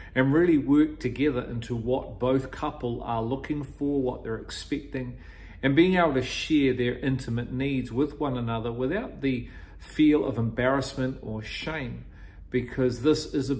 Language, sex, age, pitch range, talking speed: English, male, 40-59, 115-135 Hz, 160 wpm